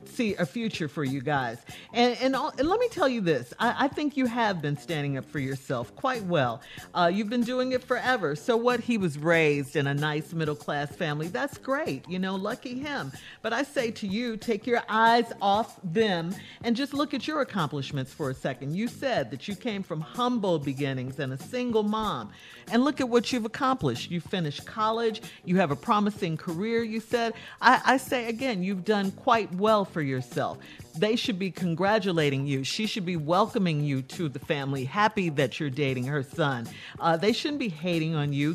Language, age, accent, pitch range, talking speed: English, 50-69, American, 150-230 Hz, 205 wpm